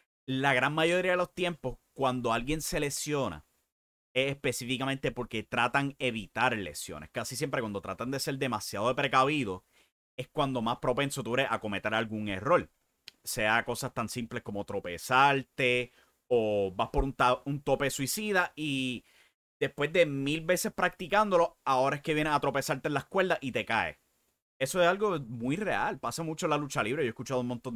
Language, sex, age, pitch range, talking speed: English, male, 30-49, 115-150 Hz, 175 wpm